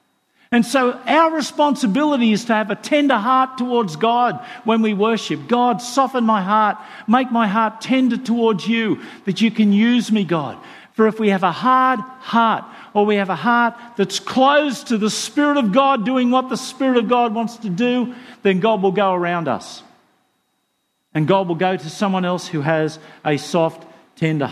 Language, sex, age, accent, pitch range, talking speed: English, male, 50-69, Australian, 190-250 Hz, 190 wpm